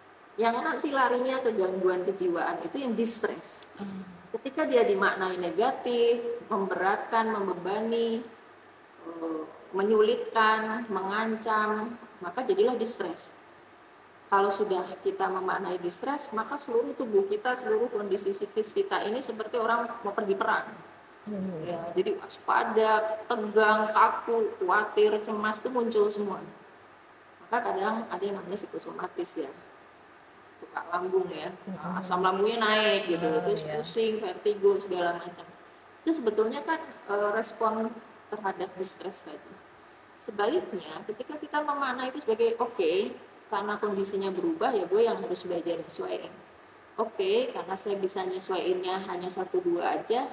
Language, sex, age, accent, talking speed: Indonesian, female, 30-49, native, 120 wpm